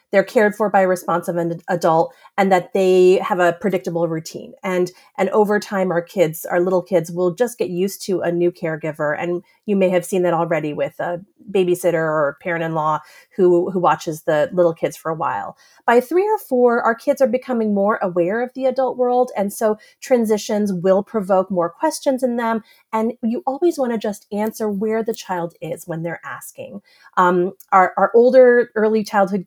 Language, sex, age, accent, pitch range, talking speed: English, female, 30-49, American, 170-220 Hz, 200 wpm